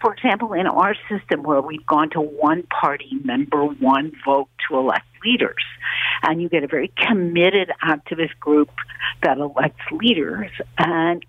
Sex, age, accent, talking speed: female, 60-79, American, 155 wpm